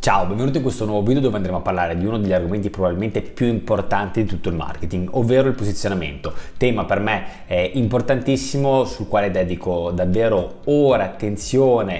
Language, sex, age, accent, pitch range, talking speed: Italian, male, 20-39, native, 90-120 Hz, 170 wpm